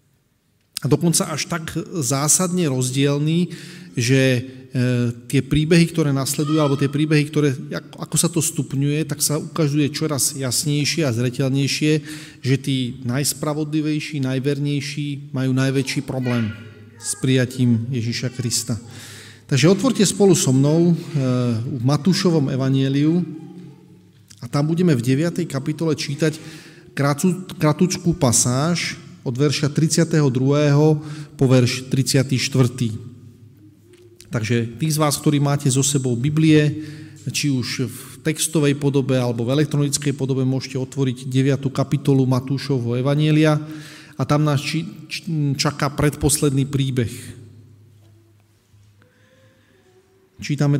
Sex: male